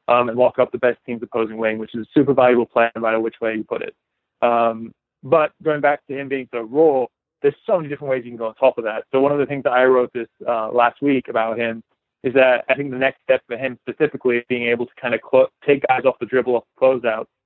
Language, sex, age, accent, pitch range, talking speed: English, male, 20-39, American, 115-130 Hz, 280 wpm